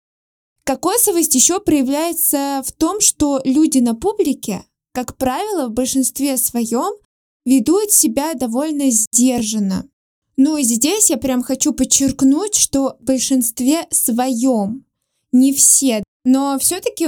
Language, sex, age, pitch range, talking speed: Russian, female, 20-39, 255-300 Hz, 115 wpm